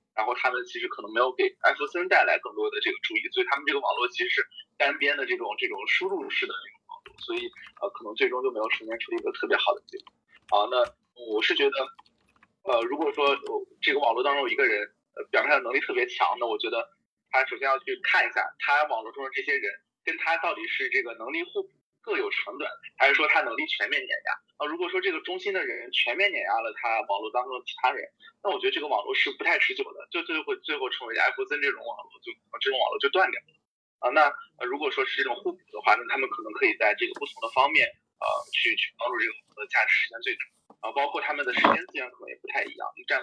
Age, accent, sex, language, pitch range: 20-39, native, male, Chinese, 365-425 Hz